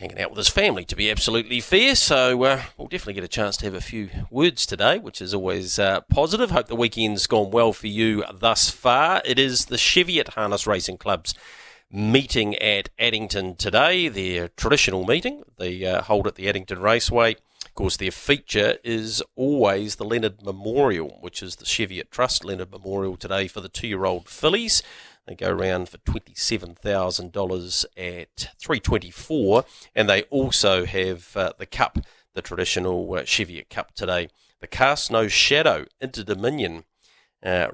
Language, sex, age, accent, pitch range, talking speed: English, male, 40-59, Australian, 95-115 Hz, 165 wpm